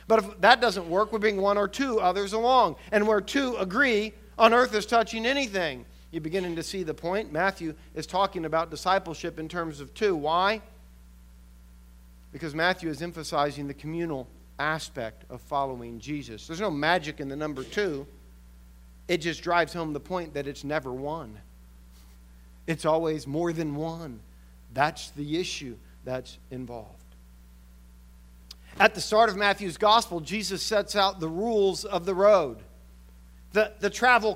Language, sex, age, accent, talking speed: English, male, 50-69, American, 160 wpm